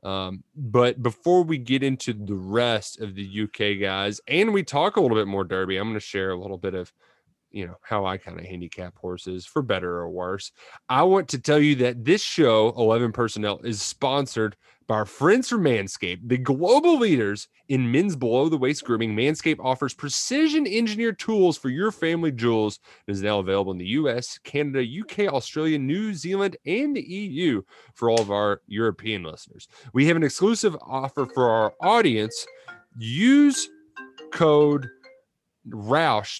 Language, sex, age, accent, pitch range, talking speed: English, male, 30-49, American, 100-150 Hz, 175 wpm